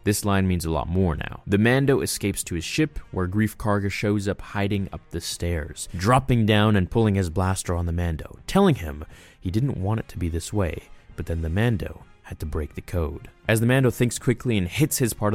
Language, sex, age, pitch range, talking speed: English, male, 20-39, 85-105 Hz, 230 wpm